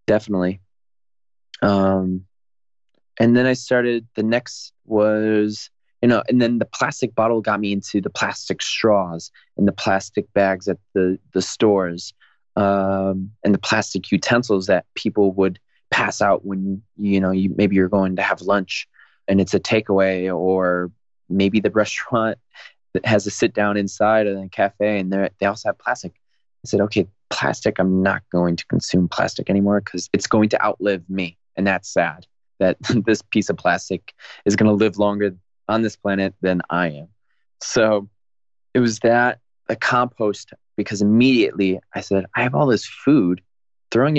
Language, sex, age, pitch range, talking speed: English, male, 20-39, 95-110 Hz, 170 wpm